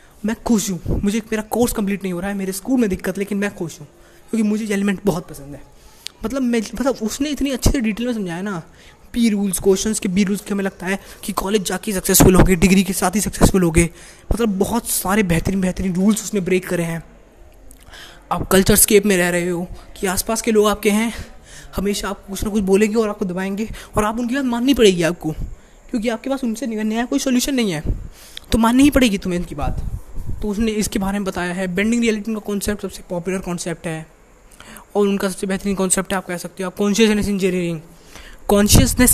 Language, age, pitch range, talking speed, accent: Hindi, 20-39, 180-215 Hz, 215 wpm, native